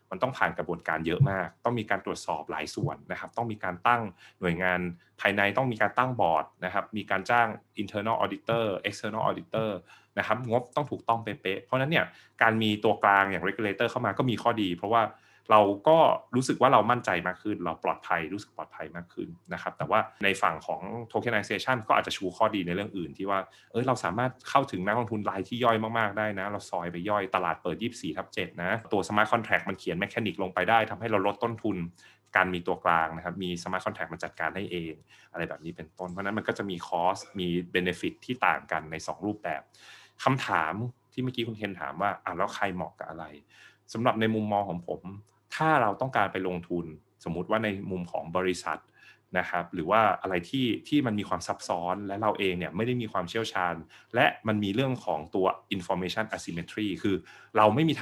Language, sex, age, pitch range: Thai, male, 20-39, 90-115 Hz